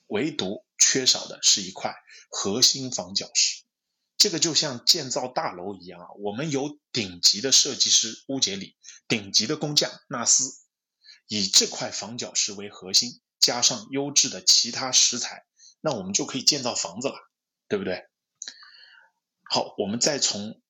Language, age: Chinese, 20-39